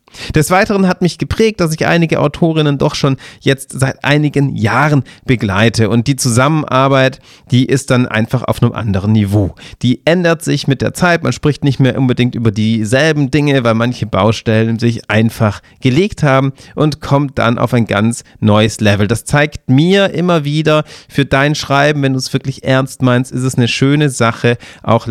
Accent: German